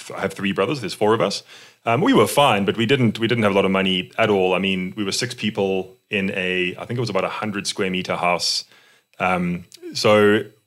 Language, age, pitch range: English, 20-39, 95-120 Hz